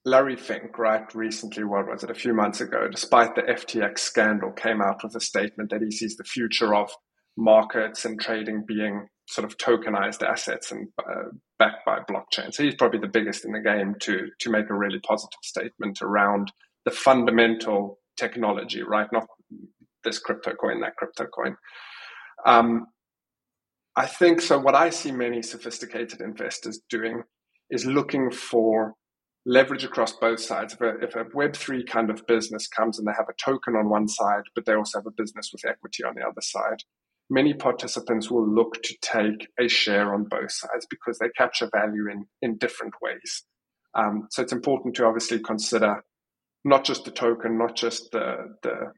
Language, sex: English, male